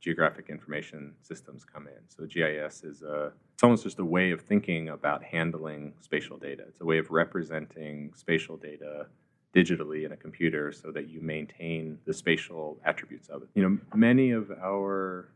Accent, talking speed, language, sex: American, 170 wpm, English, male